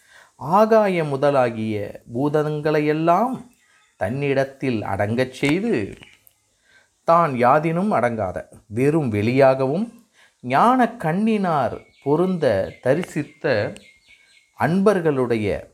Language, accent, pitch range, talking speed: Tamil, native, 115-165 Hz, 60 wpm